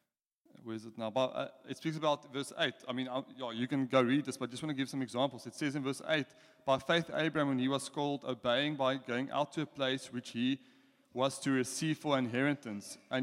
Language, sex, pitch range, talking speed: English, male, 130-165 Hz, 255 wpm